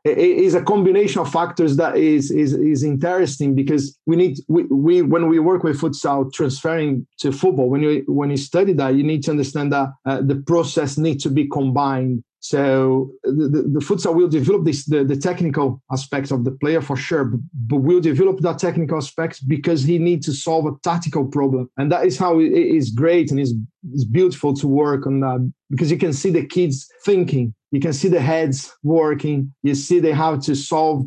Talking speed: 210 wpm